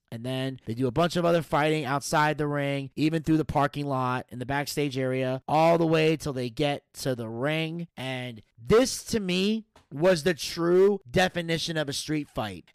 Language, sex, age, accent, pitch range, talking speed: English, male, 30-49, American, 140-175 Hz, 200 wpm